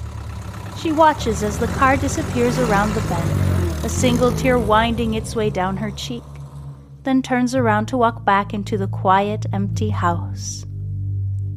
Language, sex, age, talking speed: English, female, 30-49, 150 wpm